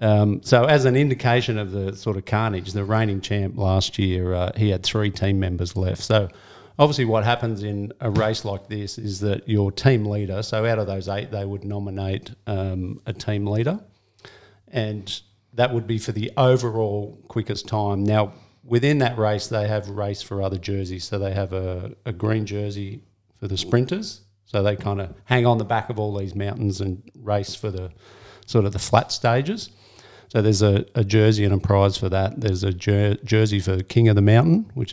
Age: 50-69